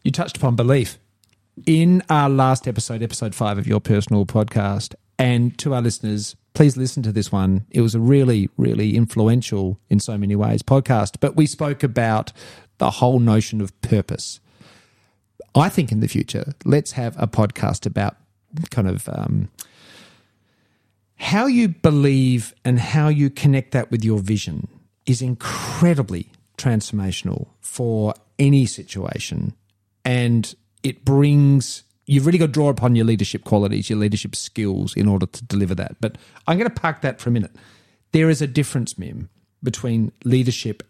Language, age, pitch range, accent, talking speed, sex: English, 40-59, 105-140 Hz, Australian, 160 wpm, male